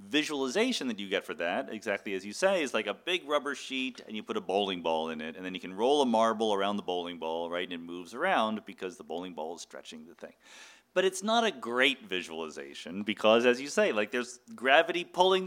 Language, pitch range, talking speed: English, 95-135 Hz, 240 wpm